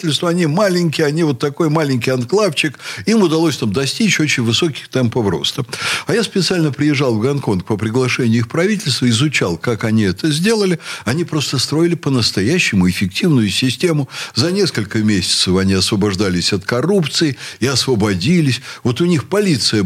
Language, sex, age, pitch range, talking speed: Russian, male, 60-79, 110-165 Hz, 150 wpm